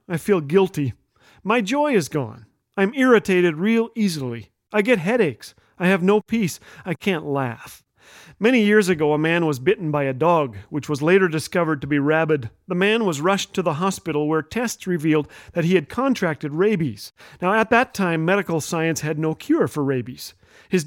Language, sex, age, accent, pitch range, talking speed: English, male, 40-59, American, 160-210 Hz, 185 wpm